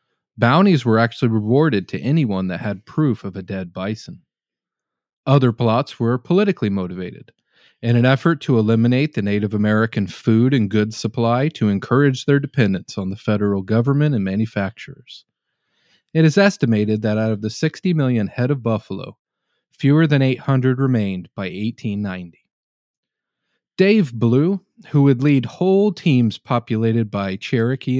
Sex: male